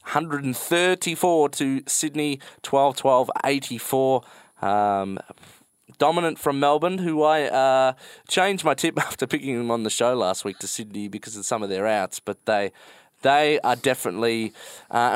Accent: Australian